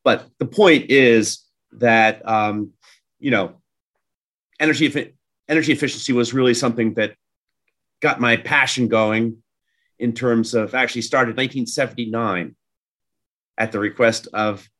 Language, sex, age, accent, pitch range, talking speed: English, male, 40-59, American, 110-150 Hz, 120 wpm